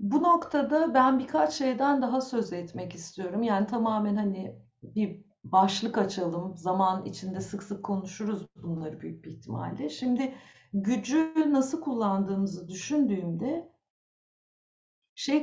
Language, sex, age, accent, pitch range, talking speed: Turkish, female, 50-69, native, 190-265 Hz, 115 wpm